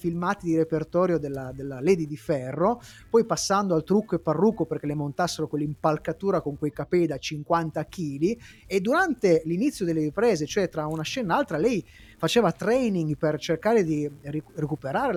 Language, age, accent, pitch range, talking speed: Italian, 30-49, native, 155-225 Hz, 175 wpm